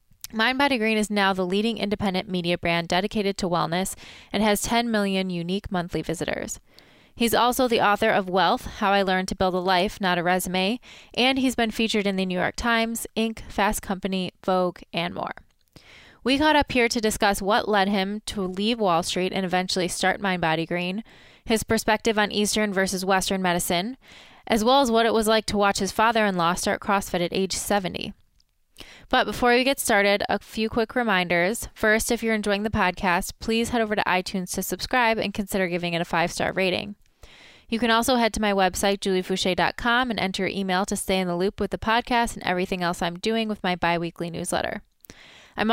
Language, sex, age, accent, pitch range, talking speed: English, female, 20-39, American, 185-225 Hz, 195 wpm